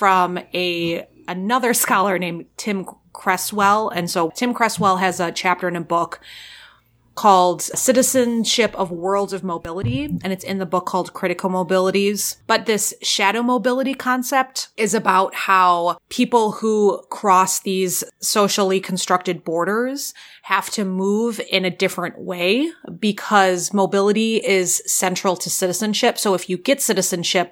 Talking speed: 135 wpm